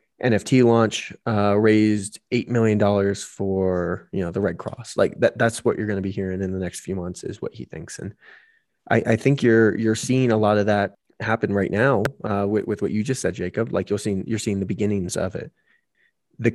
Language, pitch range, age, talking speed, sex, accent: English, 100-115 Hz, 20-39, 230 wpm, male, American